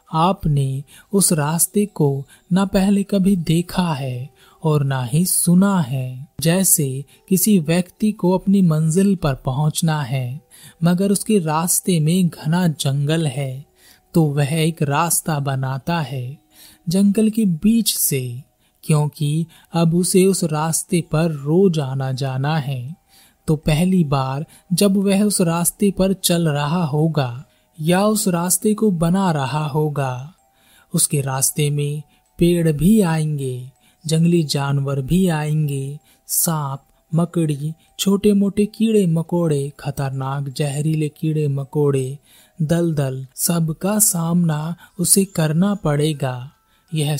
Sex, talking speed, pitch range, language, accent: male, 125 wpm, 140-180 Hz, Hindi, native